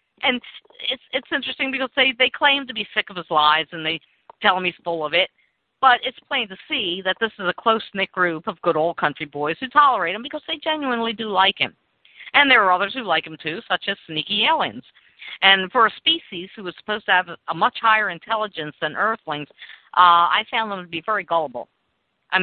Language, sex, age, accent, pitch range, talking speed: English, female, 50-69, American, 155-220 Hz, 220 wpm